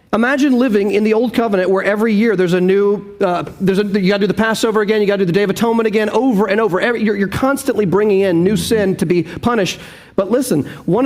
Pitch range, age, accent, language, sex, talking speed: 190-230 Hz, 40-59, American, English, male, 260 wpm